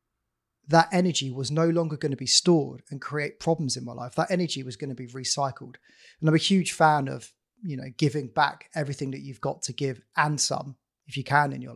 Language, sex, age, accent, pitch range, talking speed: English, male, 30-49, British, 140-170 Hz, 230 wpm